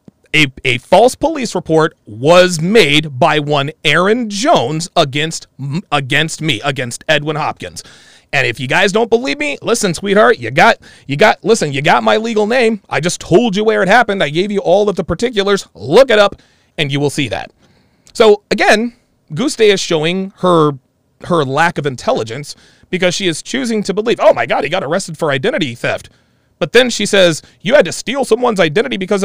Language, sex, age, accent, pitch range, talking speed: English, male, 30-49, American, 155-215 Hz, 195 wpm